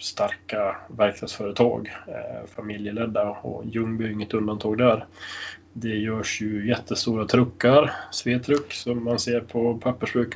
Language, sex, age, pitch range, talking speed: English, male, 20-39, 110-125 Hz, 120 wpm